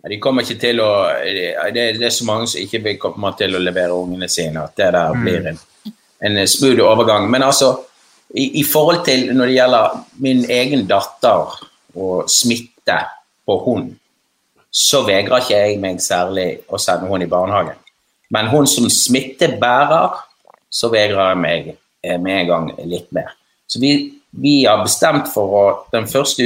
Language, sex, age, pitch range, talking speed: English, male, 30-49, 95-130 Hz, 160 wpm